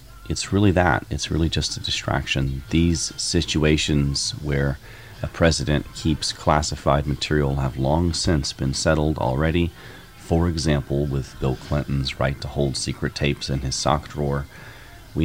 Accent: American